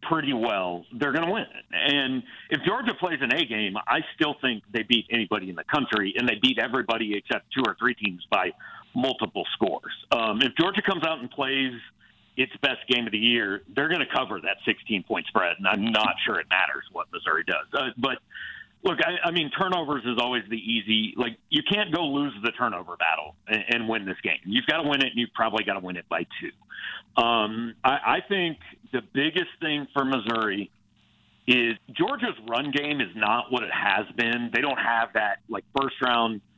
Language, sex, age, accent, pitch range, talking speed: English, male, 50-69, American, 110-145 Hz, 205 wpm